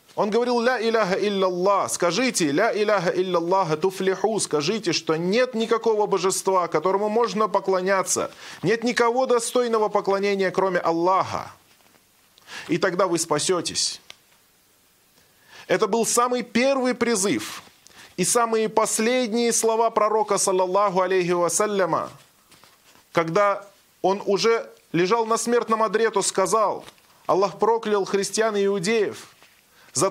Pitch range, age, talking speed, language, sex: 185-230 Hz, 20-39, 105 wpm, Russian, male